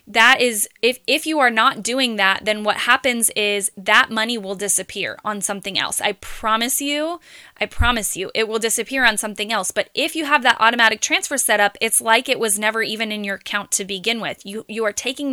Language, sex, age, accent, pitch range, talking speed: English, female, 10-29, American, 215-250 Hz, 225 wpm